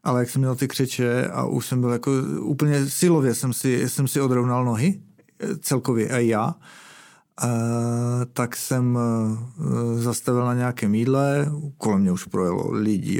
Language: Czech